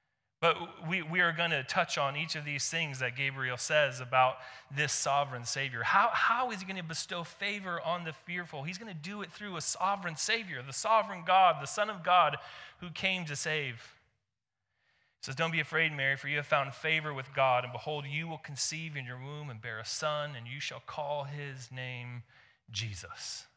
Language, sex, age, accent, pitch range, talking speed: English, male, 30-49, American, 120-160 Hz, 210 wpm